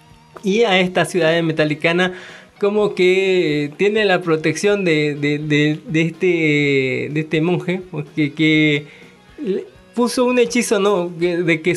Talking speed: 135 wpm